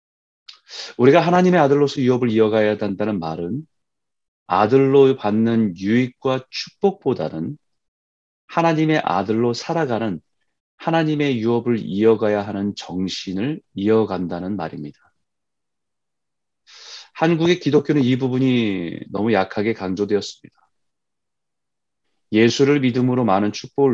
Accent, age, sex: native, 30-49, male